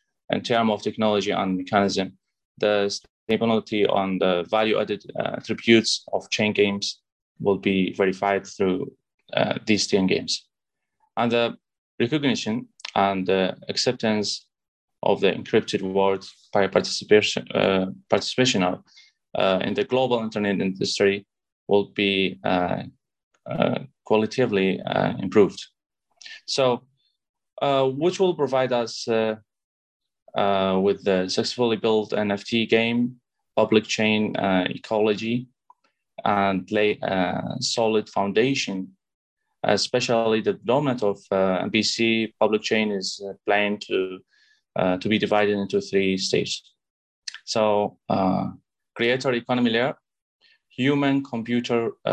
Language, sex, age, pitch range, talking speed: English, male, 20-39, 100-125 Hz, 115 wpm